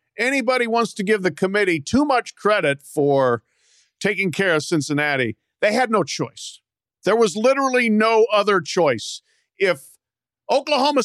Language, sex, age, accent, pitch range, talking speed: English, male, 50-69, American, 155-205 Hz, 140 wpm